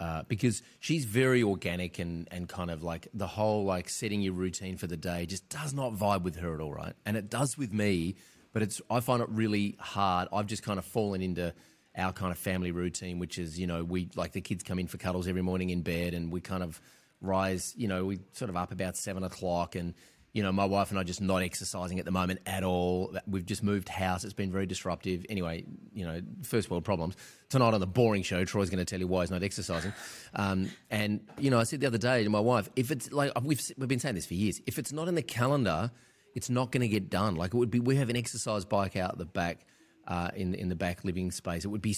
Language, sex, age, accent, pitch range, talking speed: English, male, 30-49, Australian, 90-115 Hz, 260 wpm